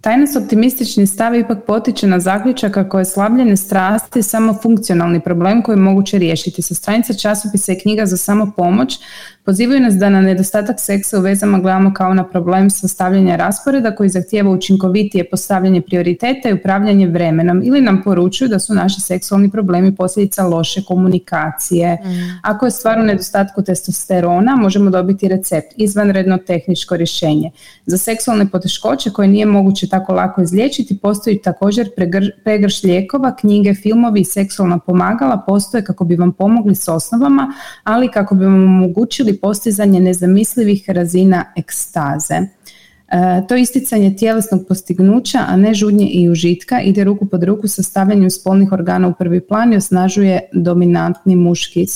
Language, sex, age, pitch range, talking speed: Croatian, female, 20-39, 185-215 Hz, 150 wpm